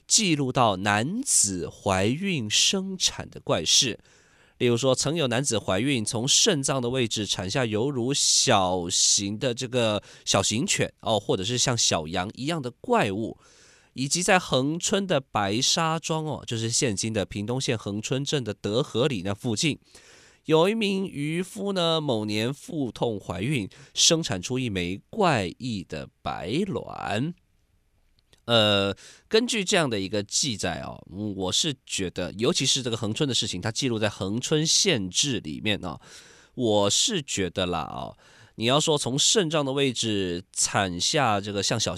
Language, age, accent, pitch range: Chinese, 20-39, native, 100-150 Hz